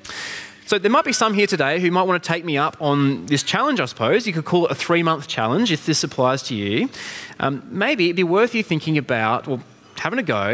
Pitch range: 125-185 Hz